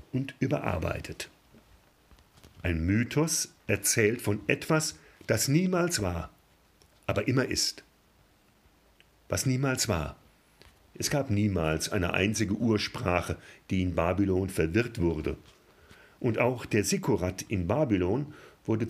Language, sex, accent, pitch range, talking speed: German, male, German, 95-135 Hz, 110 wpm